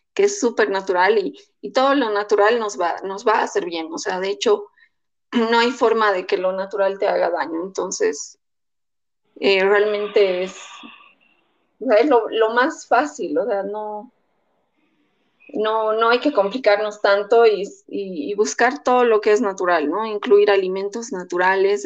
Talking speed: 175 wpm